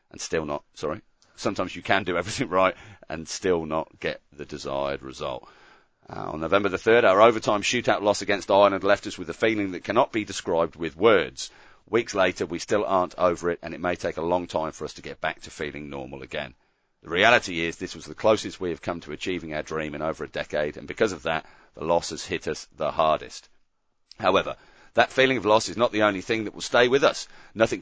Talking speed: 230 wpm